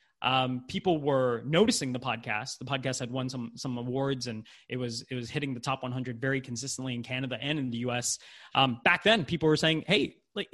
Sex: male